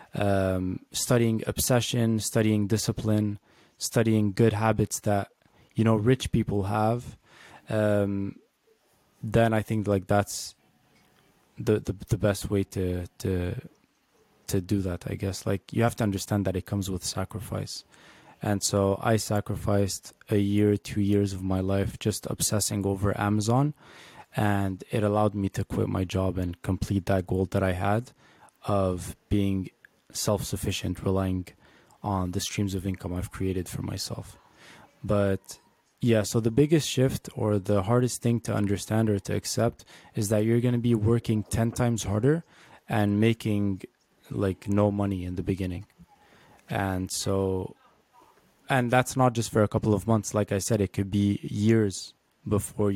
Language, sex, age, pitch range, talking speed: English, male, 20-39, 95-115 Hz, 155 wpm